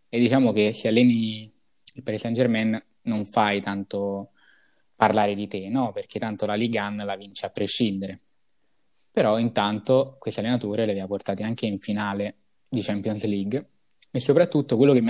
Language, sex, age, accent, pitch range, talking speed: Italian, male, 20-39, native, 105-125 Hz, 165 wpm